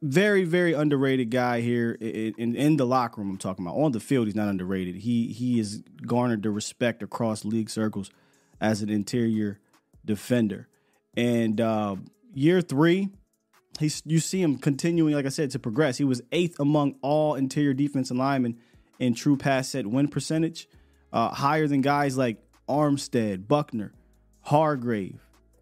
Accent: American